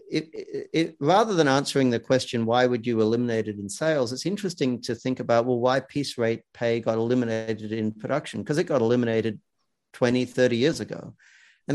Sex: male